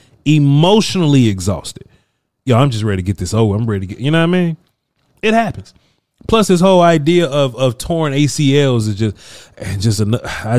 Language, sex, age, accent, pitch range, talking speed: English, male, 20-39, American, 105-140 Hz, 185 wpm